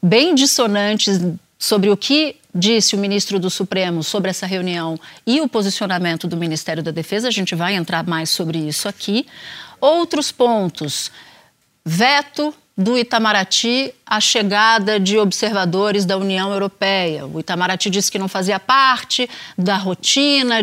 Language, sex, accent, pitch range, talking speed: Portuguese, female, Brazilian, 190-265 Hz, 145 wpm